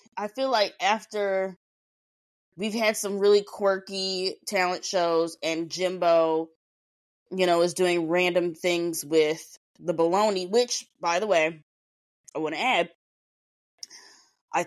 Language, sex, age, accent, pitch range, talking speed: English, female, 20-39, American, 160-215 Hz, 125 wpm